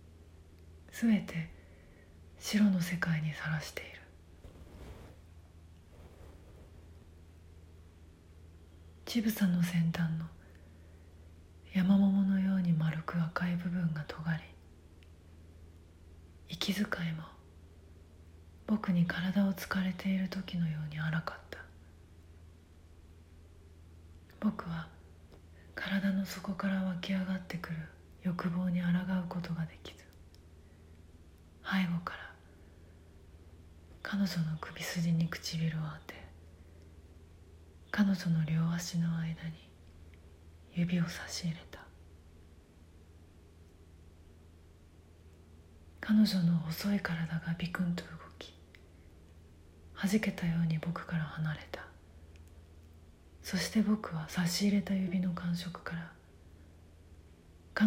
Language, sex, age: Japanese, female, 30-49